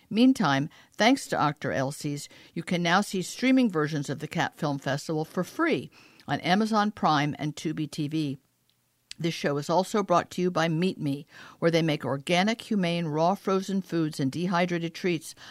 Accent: American